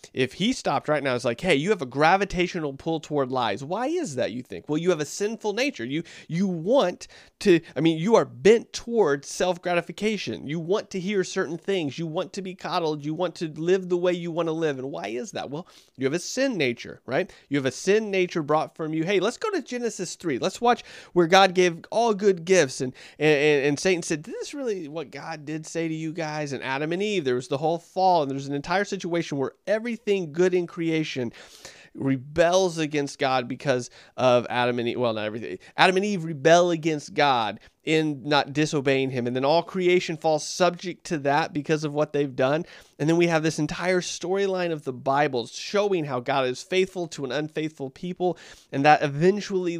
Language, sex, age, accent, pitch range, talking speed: English, male, 30-49, American, 145-185 Hz, 220 wpm